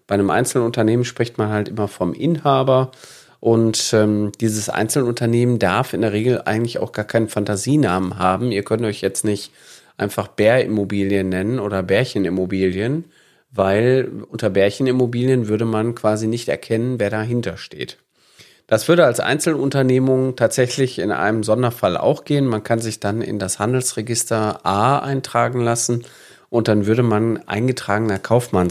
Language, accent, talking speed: German, German, 145 wpm